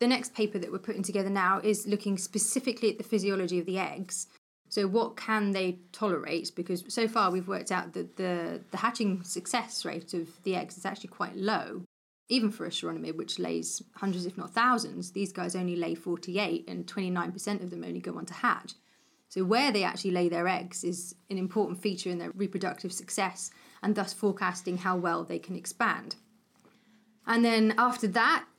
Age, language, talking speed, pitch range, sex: 20-39, English, 195 wpm, 180-220 Hz, female